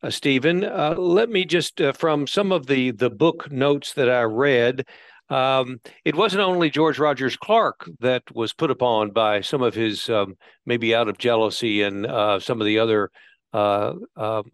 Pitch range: 115-150 Hz